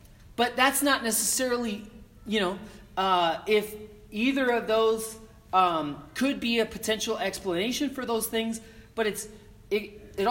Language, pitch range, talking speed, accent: English, 155-225 Hz, 140 wpm, American